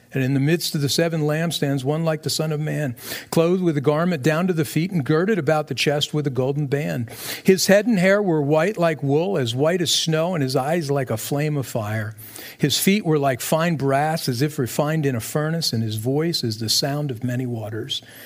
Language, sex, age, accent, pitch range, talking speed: English, male, 50-69, American, 130-170 Hz, 235 wpm